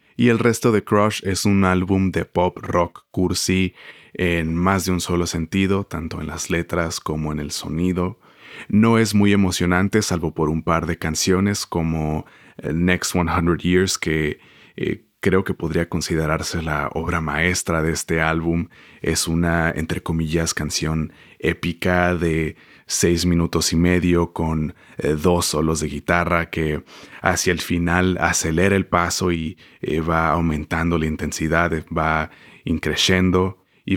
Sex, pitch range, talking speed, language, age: male, 80-95 Hz, 150 wpm, Spanish, 30-49